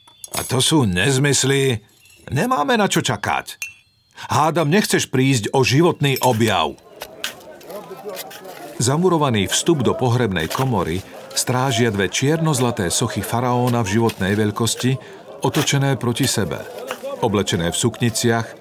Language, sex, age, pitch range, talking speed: Slovak, male, 50-69, 105-140 Hz, 105 wpm